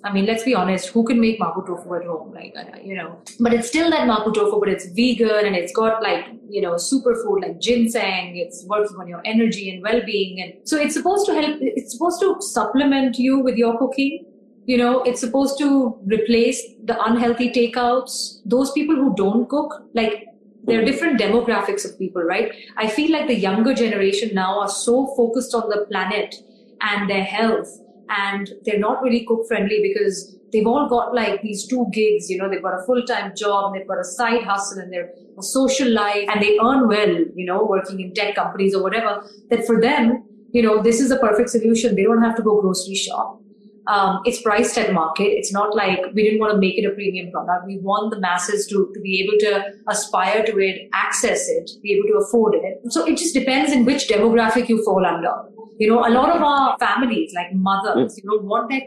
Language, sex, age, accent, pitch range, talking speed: English, female, 30-49, Indian, 200-240 Hz, 215 wpm